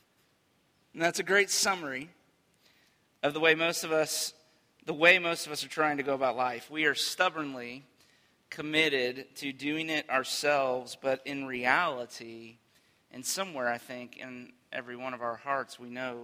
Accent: American